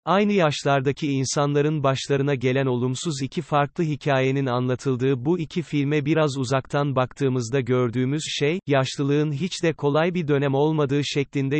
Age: 30-49